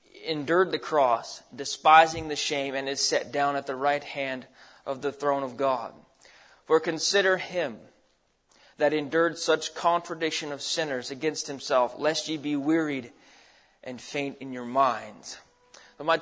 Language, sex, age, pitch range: English, male, 20-39, 140-165 Hz